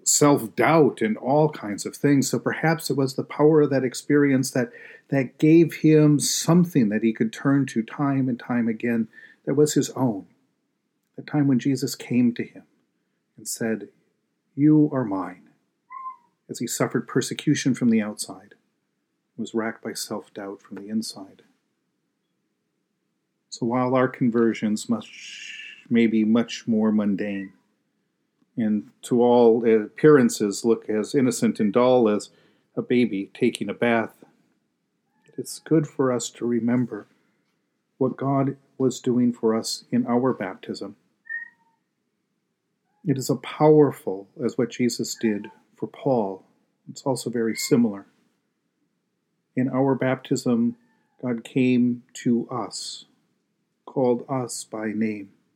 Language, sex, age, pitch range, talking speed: English, male, 40-59, 115-145 Hz, 135 wpm